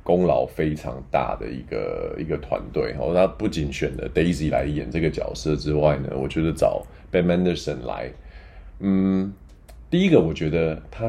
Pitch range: 75-100 Hz